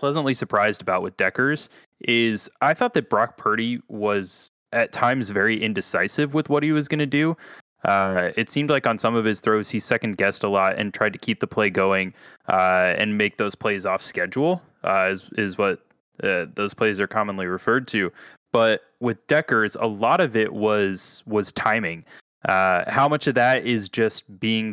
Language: English